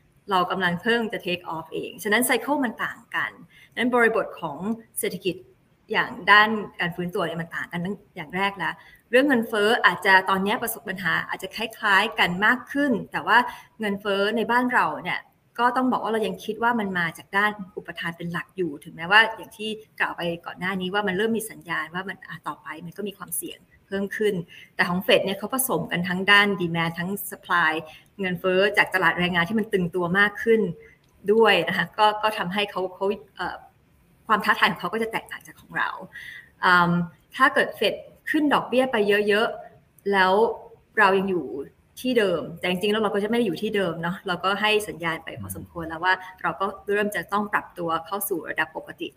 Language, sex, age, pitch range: Thai, female, 30-49, 175-215 Hz